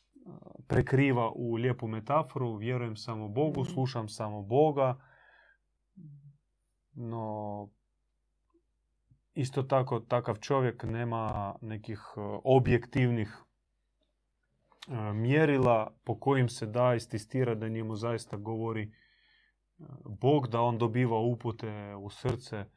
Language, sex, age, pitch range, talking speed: Croatian, male, 30-49, 110-135 Hz, 90 wpm